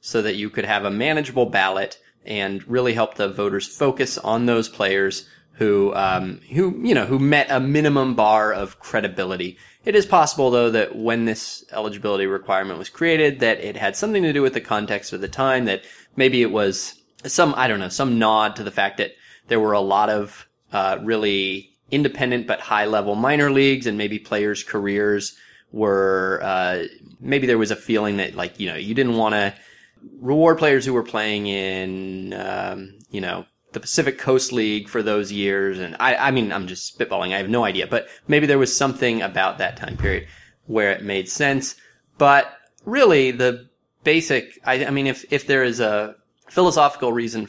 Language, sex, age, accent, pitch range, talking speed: English, male, 20-39, American, 100-130 Hz, 190 wpm